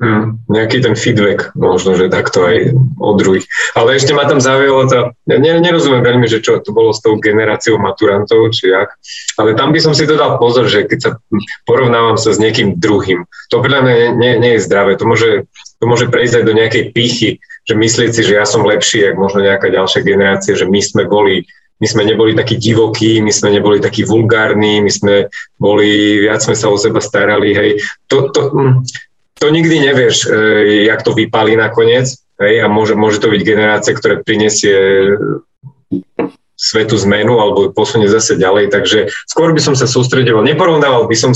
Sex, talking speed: male, 180 wpm